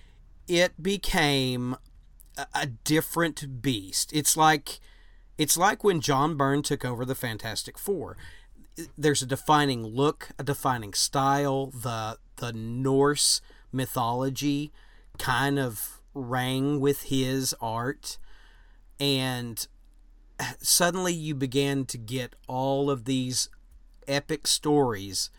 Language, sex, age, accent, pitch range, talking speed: English, male, 40-59, American, 125-145 Hz, 105 wpm